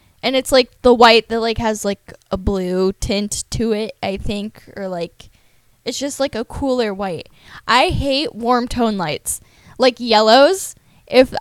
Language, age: English, 10-29